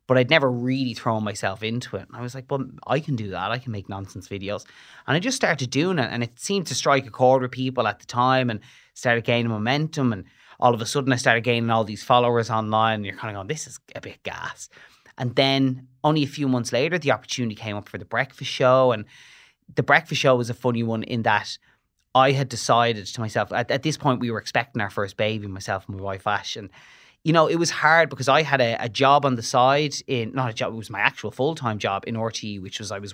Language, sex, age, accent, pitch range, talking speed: English, male, 30-49, Irish, 110-130 Hz, 255 wpm